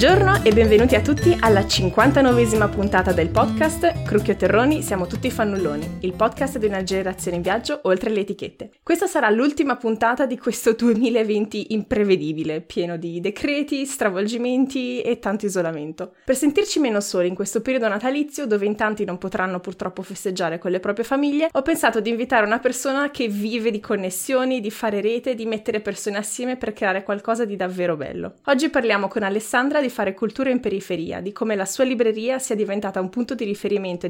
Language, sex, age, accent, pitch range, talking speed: Italian, female, 20-39, native, 195-260 Hz, 180 wpm